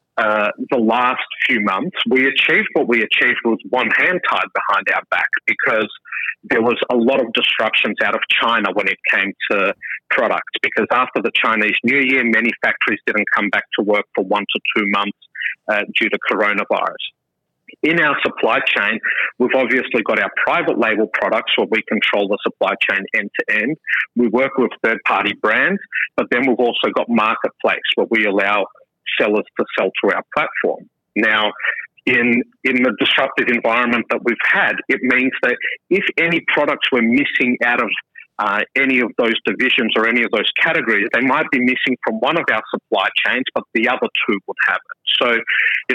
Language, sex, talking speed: English, male, 185 wpm